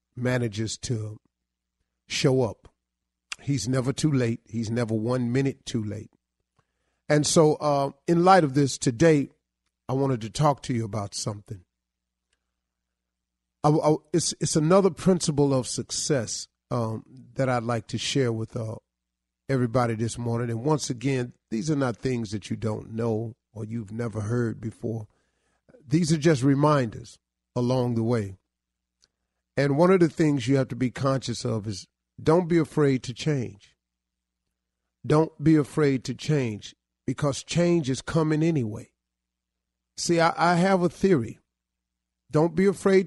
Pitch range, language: 100-150 Hz, English